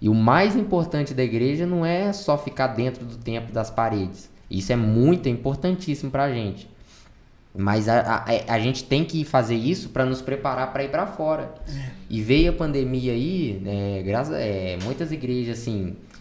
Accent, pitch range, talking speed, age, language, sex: Brazilian, 115-150 Hz, 180 wpm, 10-29, Portuguese, male